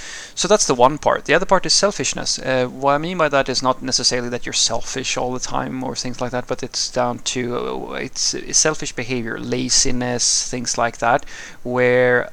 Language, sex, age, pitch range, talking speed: English, male, 30-49, 120-135 Hz, 210 wpm